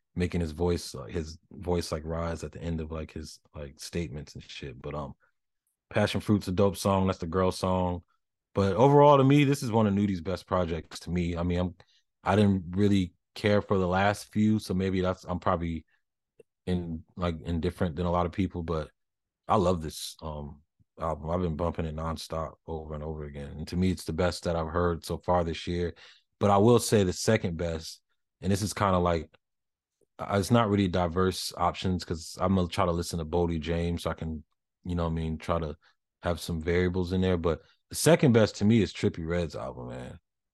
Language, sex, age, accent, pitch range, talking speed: English, male, 30-49, American, 85-100 Hz, 220 wpm